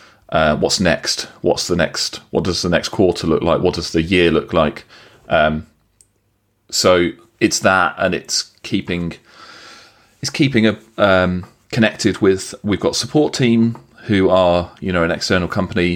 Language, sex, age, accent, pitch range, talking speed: English, male, 30-49, British, 85-105 Hz, 160 wpm